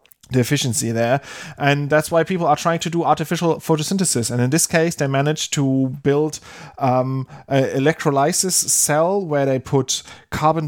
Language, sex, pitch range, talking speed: English, male, 125-155 Hz, 165 wpm